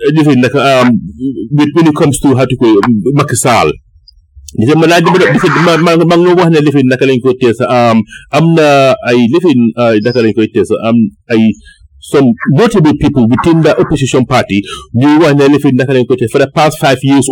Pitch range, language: 125-165 Hz, English